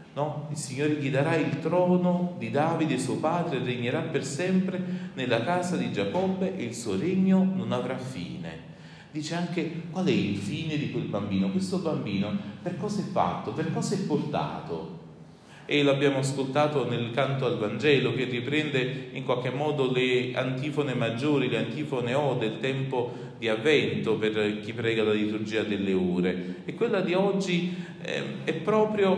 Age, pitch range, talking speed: 40-59, 115-165 Hz, 165 wpm